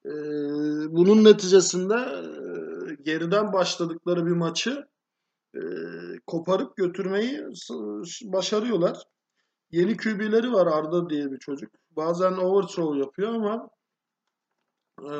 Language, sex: Turkish, male